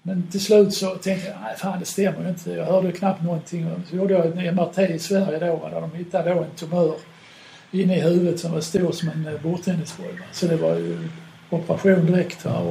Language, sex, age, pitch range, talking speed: Swedish, male, 60-79, 170-190 Hz, 210 wpm